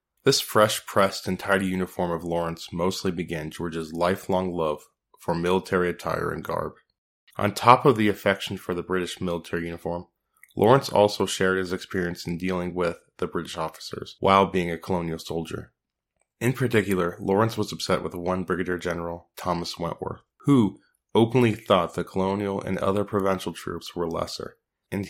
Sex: male